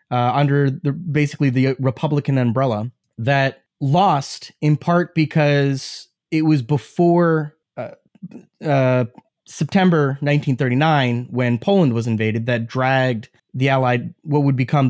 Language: English